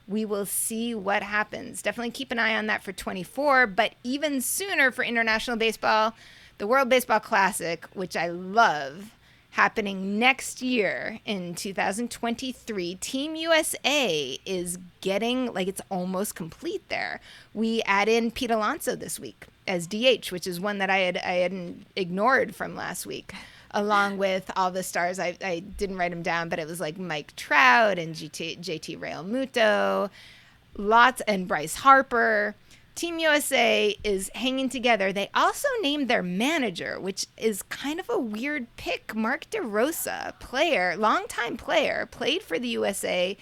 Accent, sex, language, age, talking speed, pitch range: American, female, English, 20-39, 155 wpm, 190-250 Hz